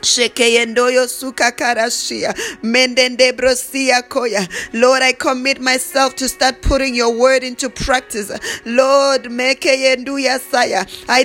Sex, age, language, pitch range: female, 20-39, English, 260-310 Hz